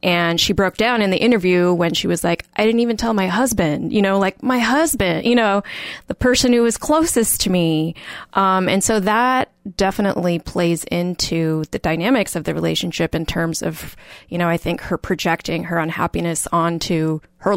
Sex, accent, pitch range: female, American, 170-210 Hz